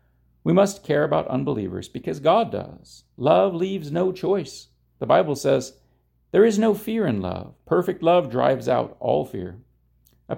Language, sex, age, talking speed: English, male, 40-59, 160 wpm